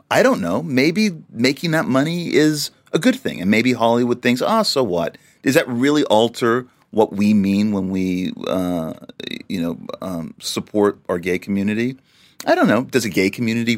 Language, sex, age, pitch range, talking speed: English, male, 40-59, 90-120 Hz, 185 wpm